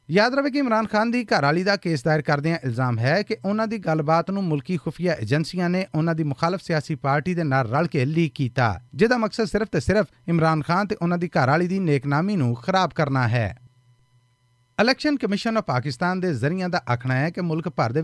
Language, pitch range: Punjabi, 130-195 Hz